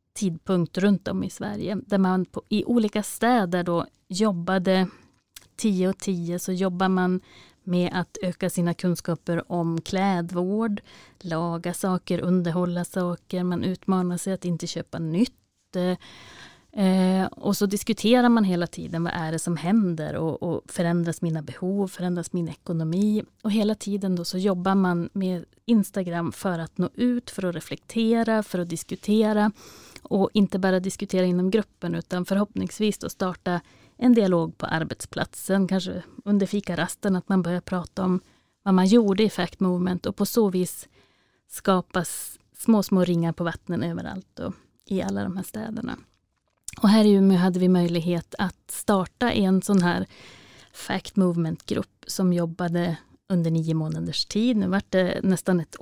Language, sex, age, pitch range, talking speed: Swedish, female, 30-49, 175-205 Hz, 155 wpm